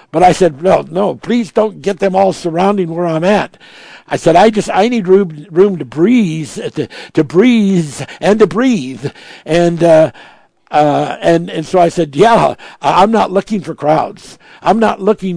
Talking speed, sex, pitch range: 185 wpm, male, 150-195 Hz